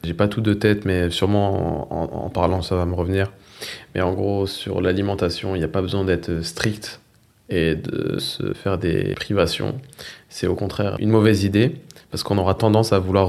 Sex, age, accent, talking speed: male, 20-39, French, 205 wpm